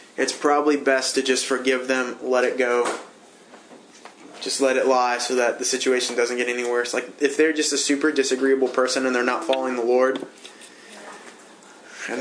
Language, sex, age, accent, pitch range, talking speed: English, male, 20-39, American, 125-145 Hz, 180 wpm